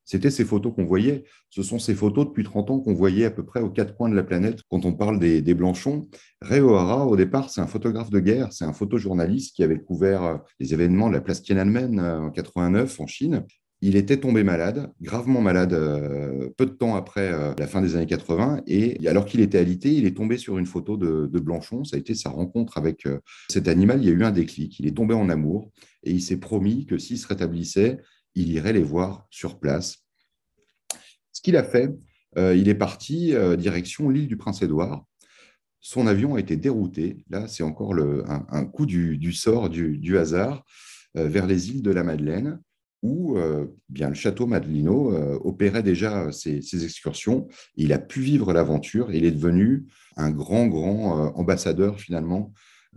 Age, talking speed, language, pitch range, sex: 30-49, 205 wpm, French, 80-110 Hz, male